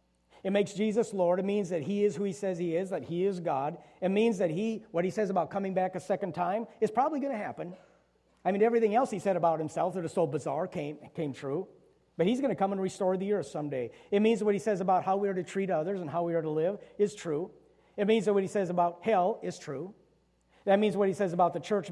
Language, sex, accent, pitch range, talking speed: English, male, American, 125-195 Hz, 270 wpm